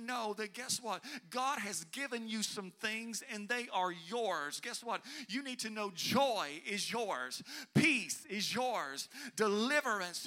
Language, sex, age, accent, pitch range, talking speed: English, male, 50-69, American, 205-270 Hz, 160 wpm